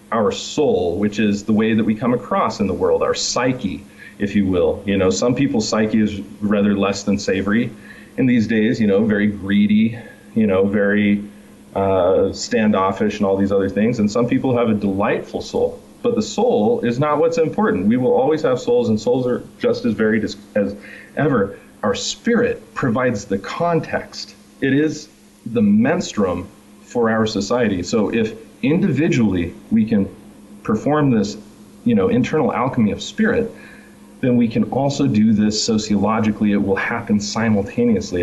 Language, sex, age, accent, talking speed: English, male, 30-49, American, 170 wpm